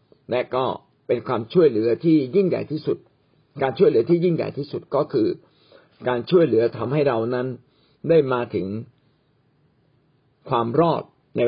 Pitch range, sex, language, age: 120-155 Hz, male, Thai, 60-79